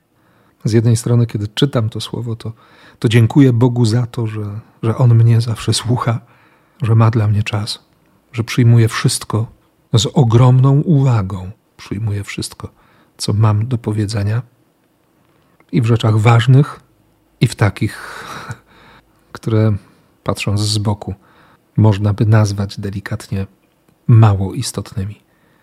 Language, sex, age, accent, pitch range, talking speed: Polish, male, 40-59, native, 105-130 Hz, 125 wpm